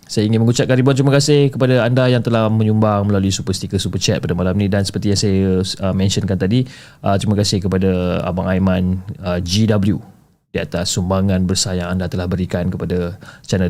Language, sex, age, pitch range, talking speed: Malay, male, 20-39, 100-125 Hz, 190 wpm